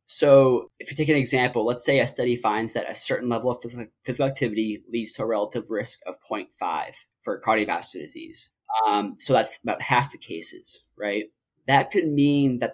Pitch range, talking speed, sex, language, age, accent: 115-145 Hz, 190 wpm, male, English, 20-39, American